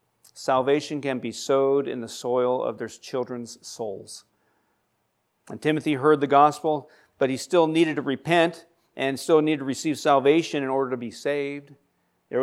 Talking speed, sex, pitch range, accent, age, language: 165 wpm, male, 135-170 Hz, American, 50-69, English